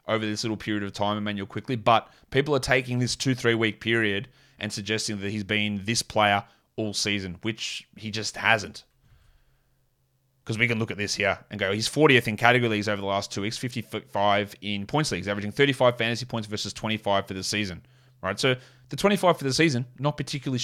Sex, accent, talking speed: male, Australian, 205 wpm